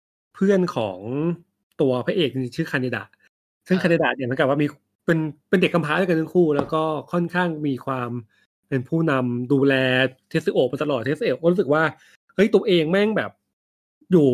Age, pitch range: 20-39, 125-160 Hz